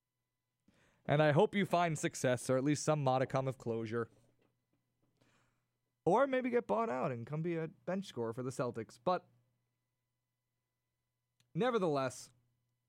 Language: English